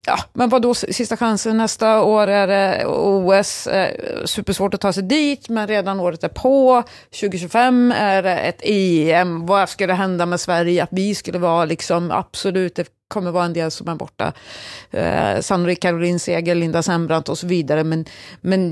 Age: 30-49